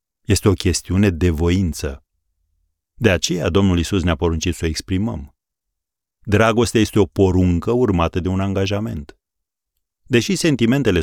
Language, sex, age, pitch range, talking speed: Romanian, male, 40-59, 80-105 Hz, 130 wpm